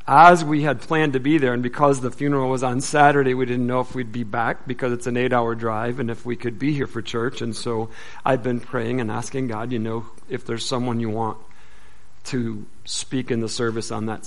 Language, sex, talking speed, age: English, male, 240 wpm, 40-59